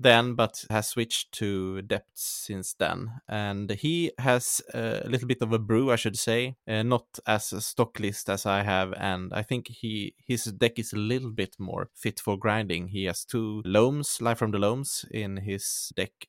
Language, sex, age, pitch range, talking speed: English, male, 20-39, 100-125 Hz, 195 wpm